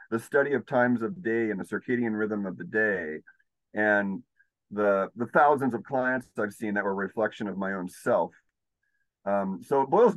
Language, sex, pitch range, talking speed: English, male, 110-150 Hz, 195 wpm